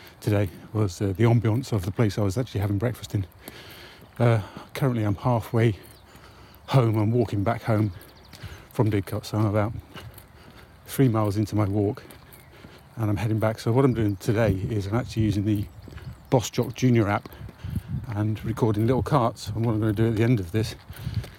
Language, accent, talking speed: English, British, 185 wpm